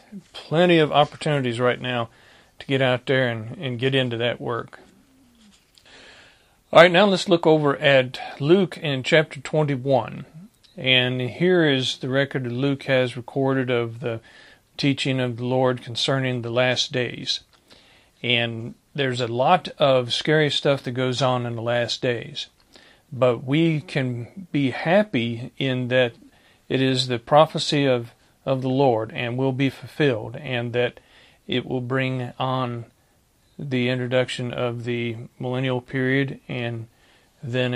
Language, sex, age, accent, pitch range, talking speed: English, male, 50-69, American, 125-140 Hz, 145 wpm